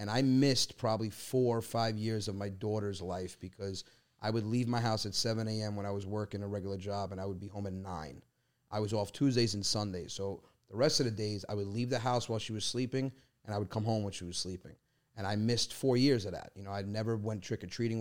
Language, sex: English, male